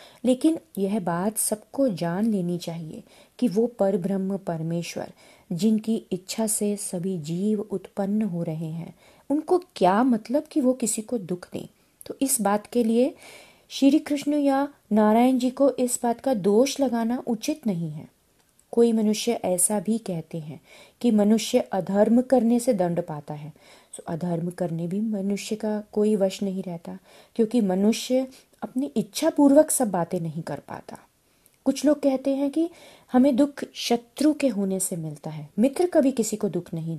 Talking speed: 160 wpm